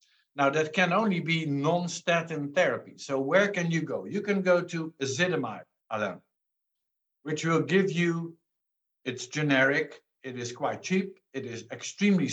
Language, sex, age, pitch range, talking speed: English, male, 60-79, 135-165 Hz, 145 wpm